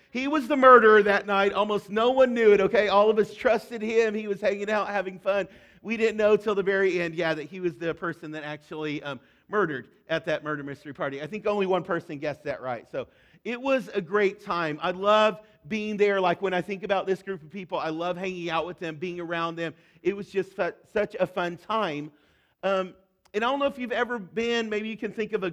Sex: male